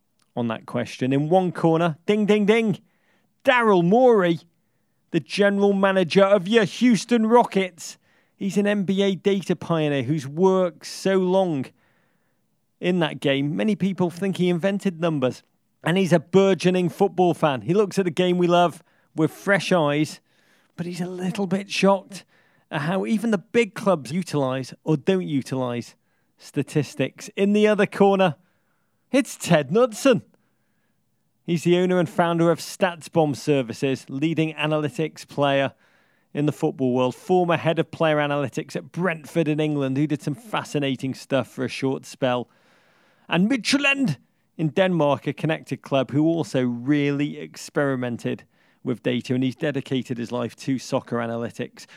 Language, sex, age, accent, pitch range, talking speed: English, male, 40-59, British, 145-190 Hz, 150 wpm